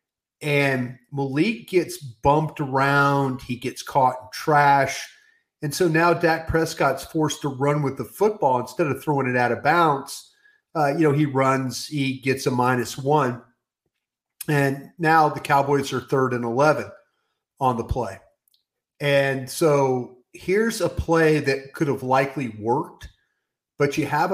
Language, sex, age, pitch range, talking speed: English, male, 40-59, 130-150 Hz, 155 wpm